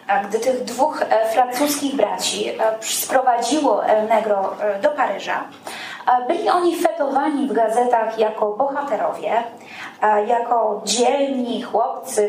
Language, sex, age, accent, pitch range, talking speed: Polish, female, 20-39, native, 225-290 Hz, 100 wpm